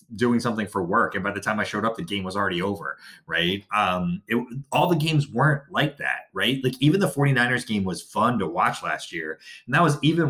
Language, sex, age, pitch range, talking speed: English, male, 30-49, 95-140 Hz, 235 wpm